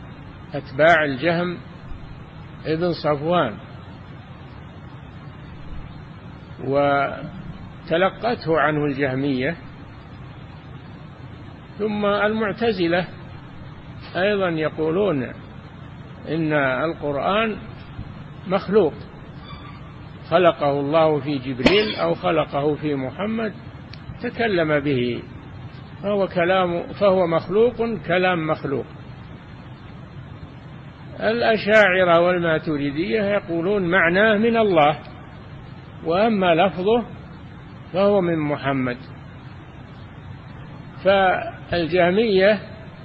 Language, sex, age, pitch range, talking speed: Arabic, male, 60-79, 140-185 Hz, 60 wpm